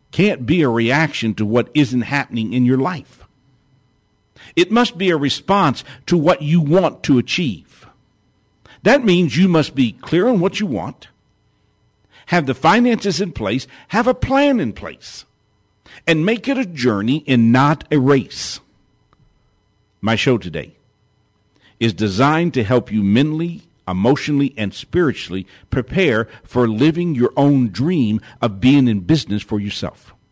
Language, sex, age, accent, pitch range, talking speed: English, male, 50-69, American, 110-155 Hz, 150 wpm